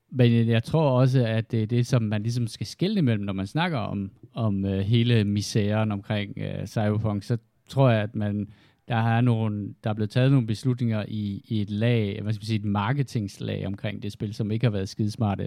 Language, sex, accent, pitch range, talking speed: Danish, male, native, 105-125 Hz, 215 wpm